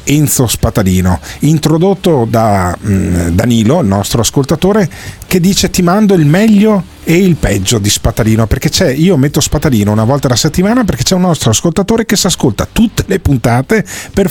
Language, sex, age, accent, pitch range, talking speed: Italian, male, 40-59, native, 105-175 Hz, 170 wpm